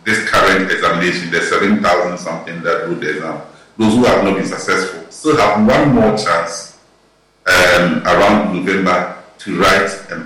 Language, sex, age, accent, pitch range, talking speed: English, male, 50-69, Nigerian, 90-115 Hz, 150 wpm